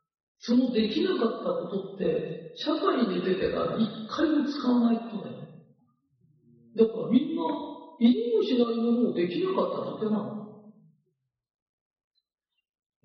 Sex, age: male, 50-69